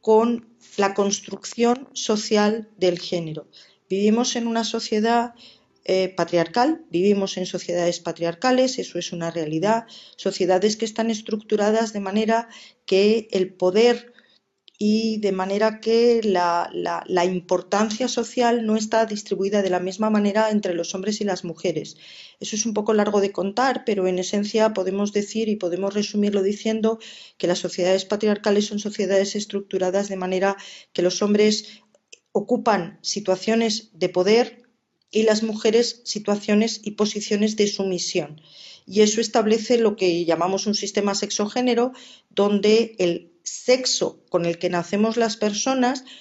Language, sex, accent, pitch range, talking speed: Spanish, female, Spanish, 190-225 Hz, 140 wpm